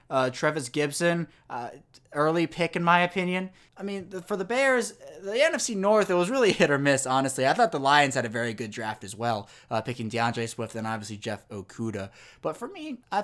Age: 20-39